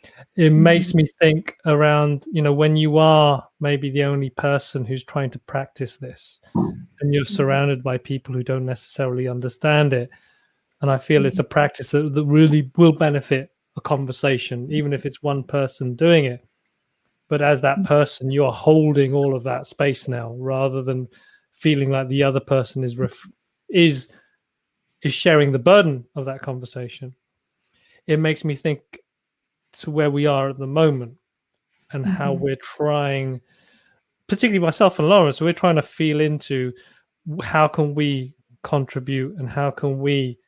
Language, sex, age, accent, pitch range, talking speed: English, male, 30-49, British, 135-155 Hz, 165 wpm